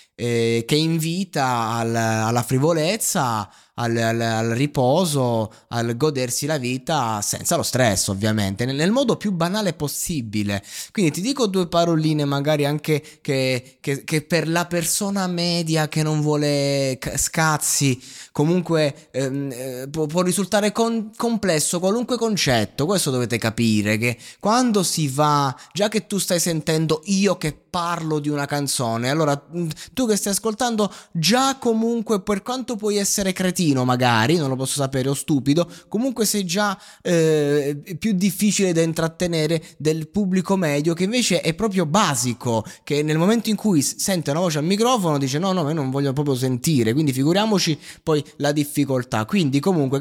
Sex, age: male, 20-39